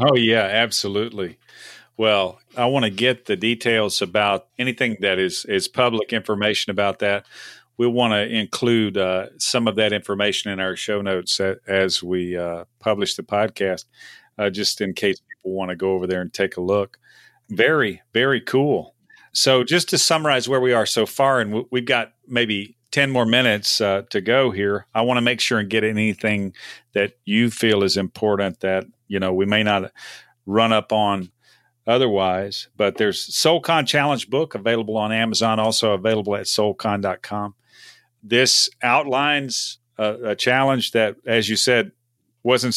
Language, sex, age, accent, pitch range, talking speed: English, male, 40-59, American, 100-120 Hz, 170 wpm